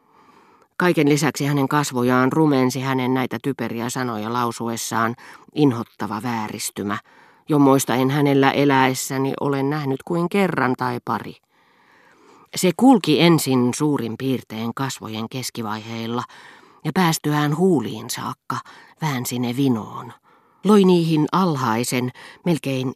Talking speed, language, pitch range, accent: 105 wpm, Finnish, 120-150 Hz, native